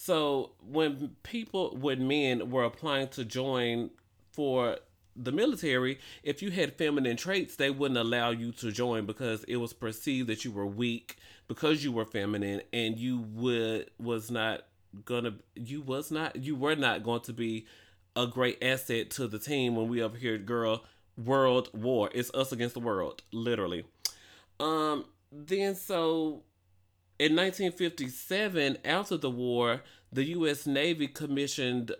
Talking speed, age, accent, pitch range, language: 150 wpm, 30-49, American, 115-140 Hz, English